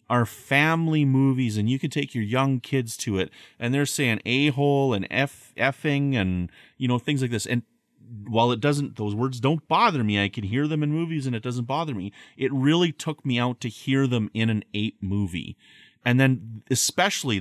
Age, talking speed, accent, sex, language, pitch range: 30-49, 205 wpm, American, male, English, 100-130 Hz